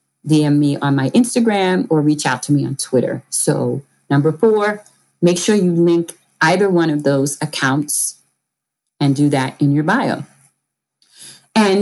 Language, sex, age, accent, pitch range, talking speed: English, female, 40-59, American, 150-225 Hz, 155 wpm